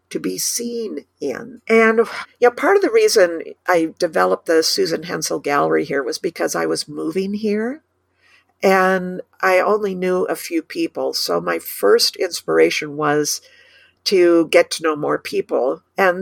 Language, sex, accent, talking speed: English, female, American, 150 wpm